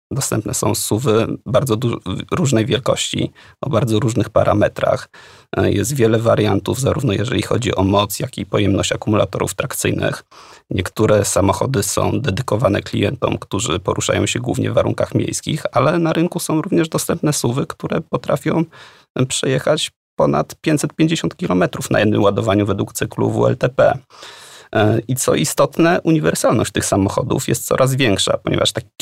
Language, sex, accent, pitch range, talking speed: Polish, male, native, 105-135 Hz, 135 wpm